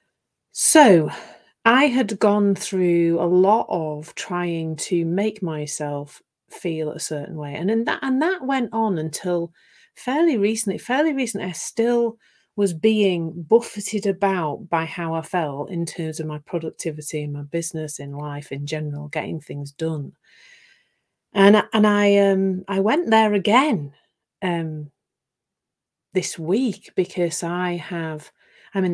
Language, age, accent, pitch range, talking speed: English, 40-59, British, 155-200 Hz, 145 wpm